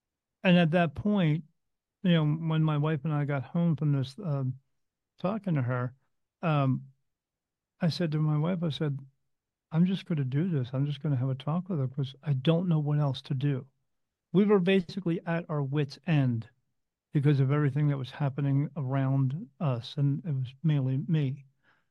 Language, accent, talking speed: English, American, 190 wpm